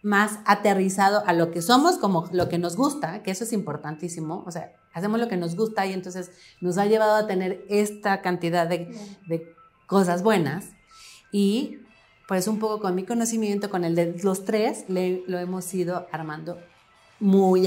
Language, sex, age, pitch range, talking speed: Spanish, female, 40-59, 170-210 Hz, 180 wpm